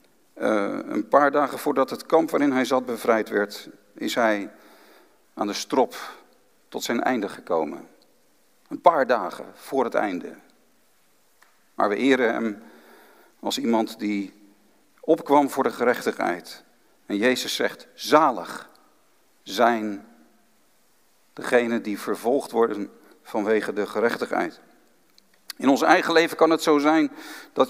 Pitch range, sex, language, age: 135-200 Hz, male, Dutch, 50-69